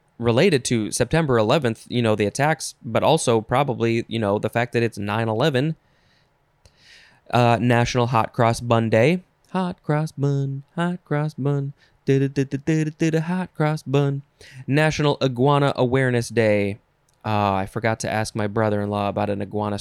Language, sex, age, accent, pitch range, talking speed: English, male, 20-39, American, 110-155 Hz, 145 wpm